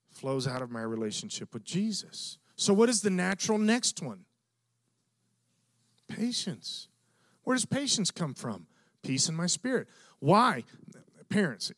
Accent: American